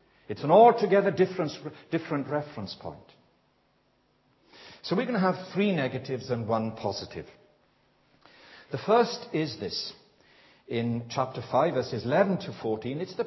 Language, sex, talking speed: English, male, 130 wpm